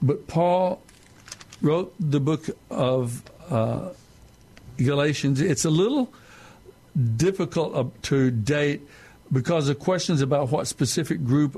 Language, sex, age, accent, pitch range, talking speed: English, male, 60-79, American, 120-150 Hz, 110 wpm